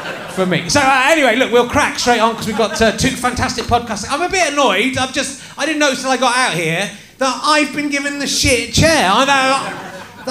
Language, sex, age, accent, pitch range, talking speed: English, male, 30-49, British, 190-265 Hz, 240 wpm